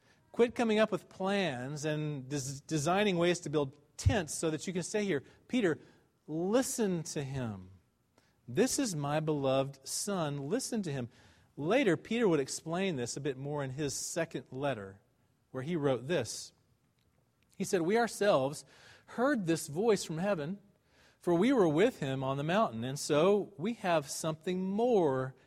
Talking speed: 160 wpm